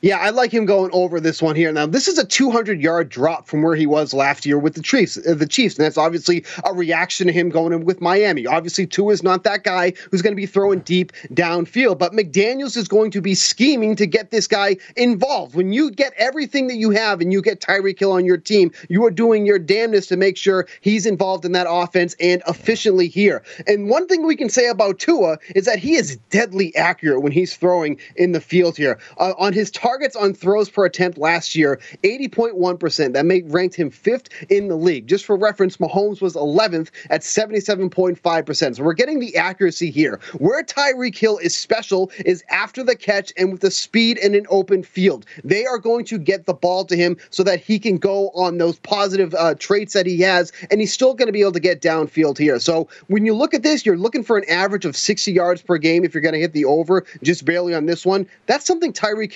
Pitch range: 170-215 Hz